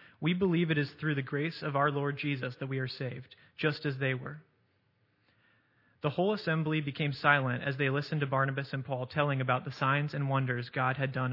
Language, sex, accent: English, male, American